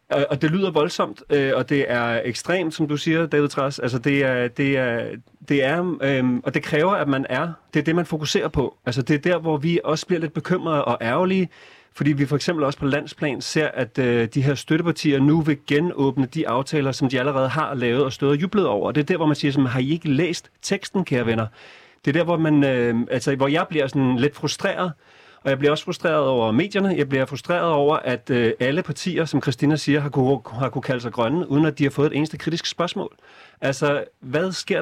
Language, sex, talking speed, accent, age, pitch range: Danish, male, 225 wpm, native, 40-59, 130-160 Hz